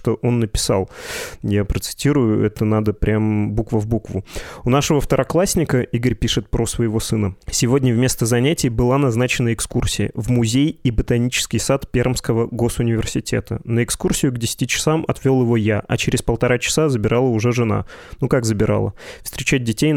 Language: Russian